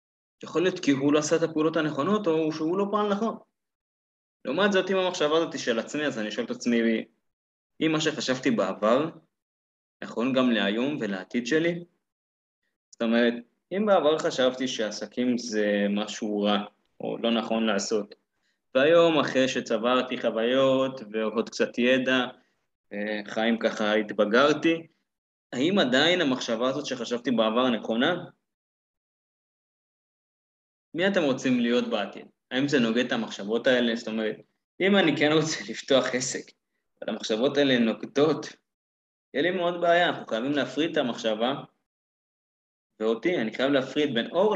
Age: 20-39